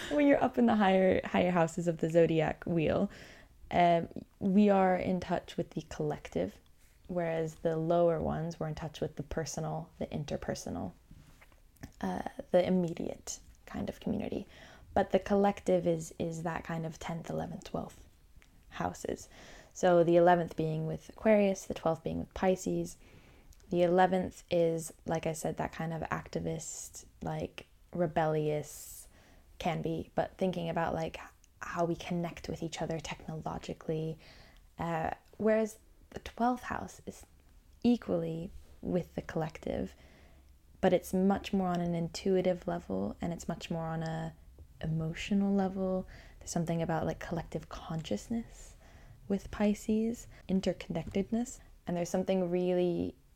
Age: 10-29